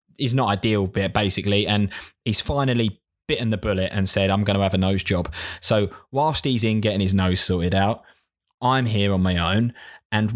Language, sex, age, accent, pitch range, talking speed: English, male, 20-39, British, 95-120 Hz, 195 wpm